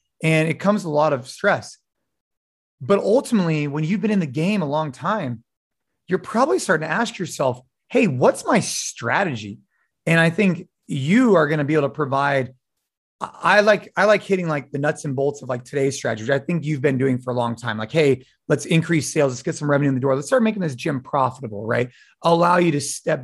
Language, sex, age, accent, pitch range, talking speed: English, male, 30-49, American, 130-180 Hz, 225 wpm